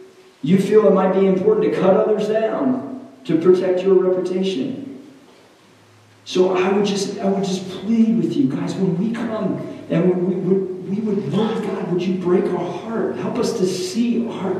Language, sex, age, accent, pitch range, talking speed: English, male, 40-59, American, 165-205 Hz, 190 wpm